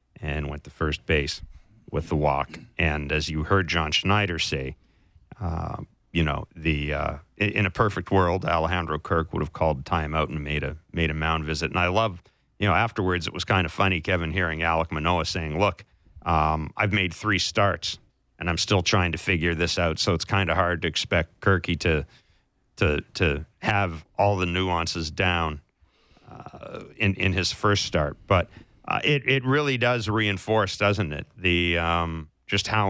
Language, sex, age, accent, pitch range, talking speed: English, male, 40-59, American, 80-100 Hz, 190 wpm